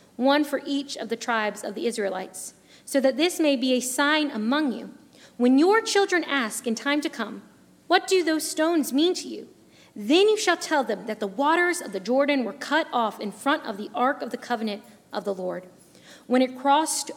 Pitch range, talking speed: 220-280 Hz, 215 wpm